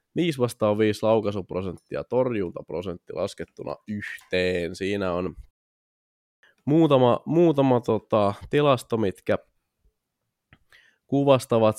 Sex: male